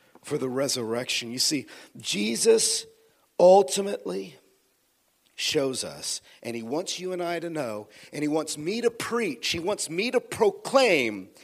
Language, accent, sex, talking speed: English, American, male, 145 wpm